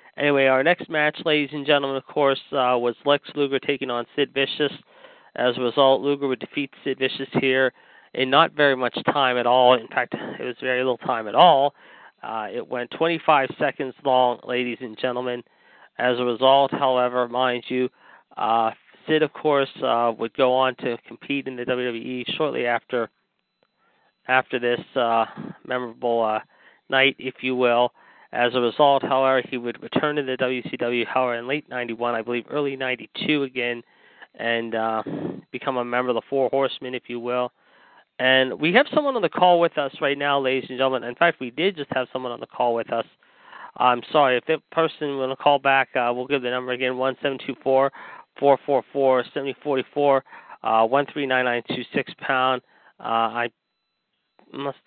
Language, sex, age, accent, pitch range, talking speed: English, male, 40-59, American, 125-140 Hz, 170 wpm